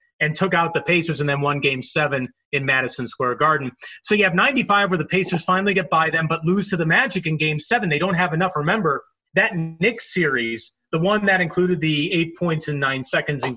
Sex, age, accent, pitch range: male, 30-49, American, 150-195 Hz